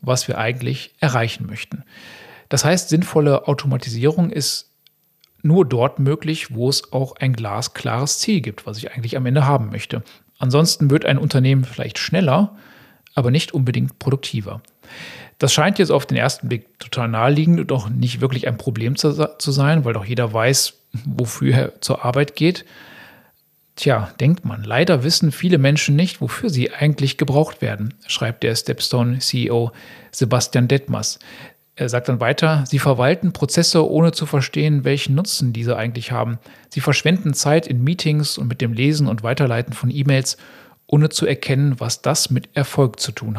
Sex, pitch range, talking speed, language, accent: male, 120-150 Hz, 165 wpm, German, German